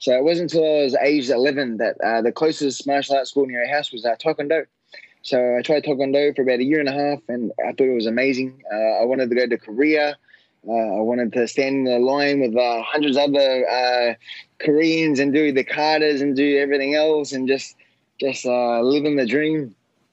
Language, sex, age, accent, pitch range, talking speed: English, male, 20-39, Australian, 125-145 Hz, 225 wpm